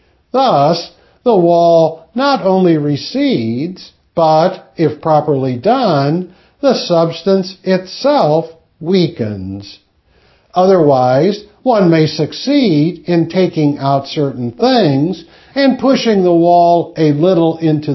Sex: male